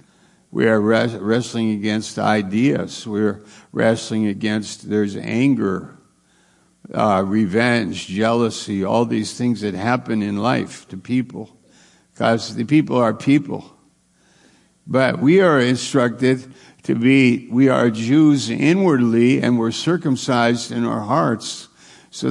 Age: 60-79